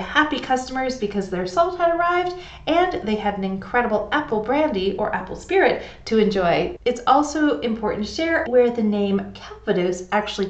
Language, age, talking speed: English, 40-59, 165 wpm